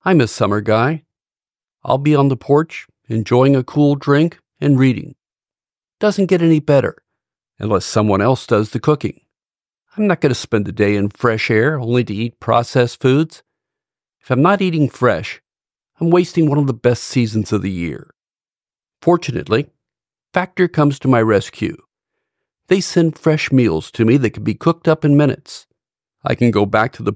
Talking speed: 175 wpm